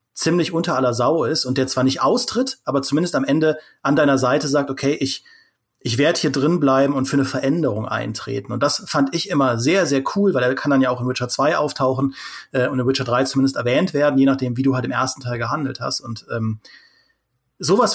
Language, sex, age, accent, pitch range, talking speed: German, male, 30-49, German, 125-150 Hz, 230 wpm